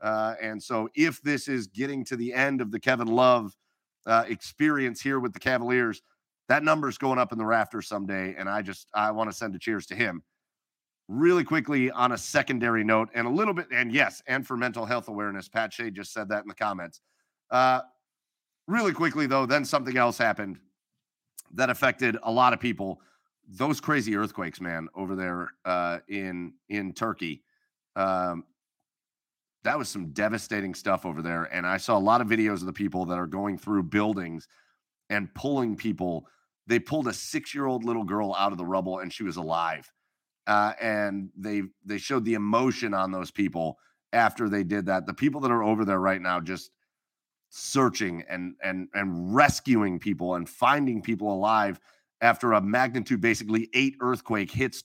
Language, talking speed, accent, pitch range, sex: English, 185 wpm, American, 95-125 Hz, male